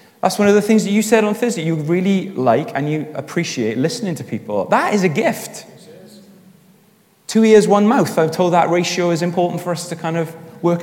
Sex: male